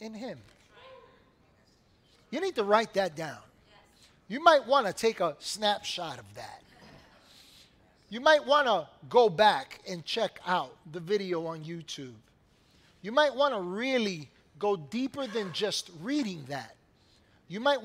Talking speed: 145 wpm